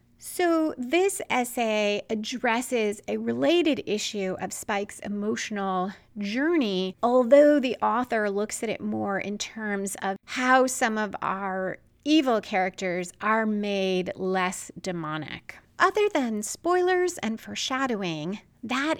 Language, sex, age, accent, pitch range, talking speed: English, female, 30-49, American, 195-265 Hz, 115 wpm